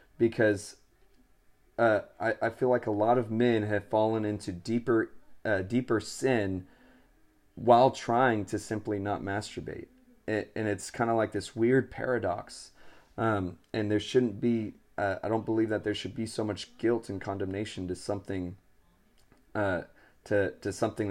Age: 30-49